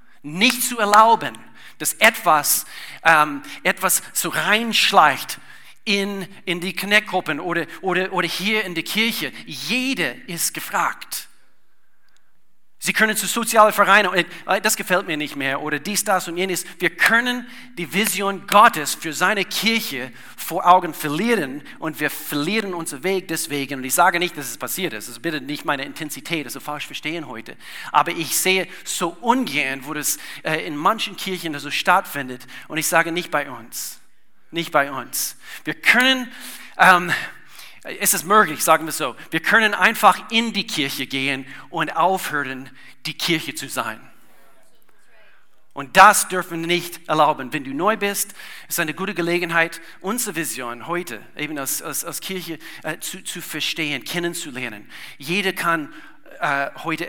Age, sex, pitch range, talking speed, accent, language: 40-59, male, 150-195 Hz, 160 wpm, German, German